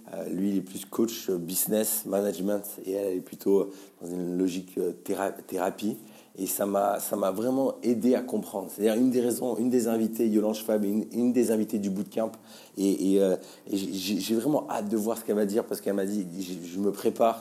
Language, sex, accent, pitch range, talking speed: French, male, French, 100-115 Hz, 205 wpm